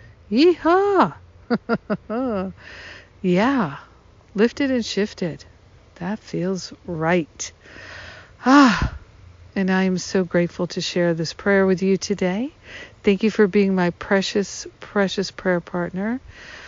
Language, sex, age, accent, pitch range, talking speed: English, female, 60-79, American, 175-210 Hz, 110 wpm